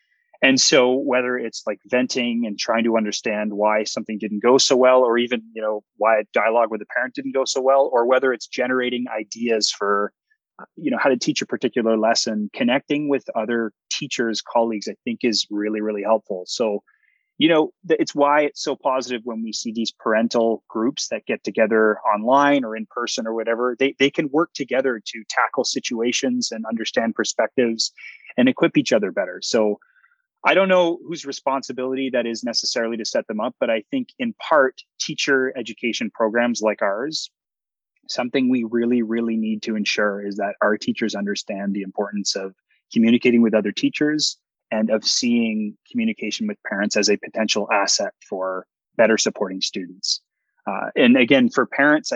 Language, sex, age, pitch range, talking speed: English, male, 30-49, 110-135 Hz, 180 wpm